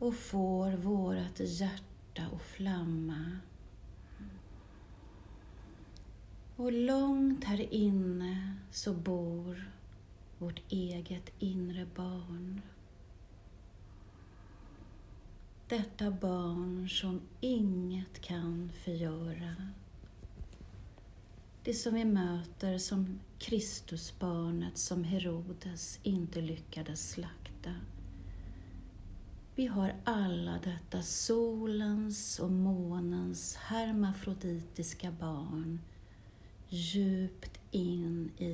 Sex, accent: female, Swedish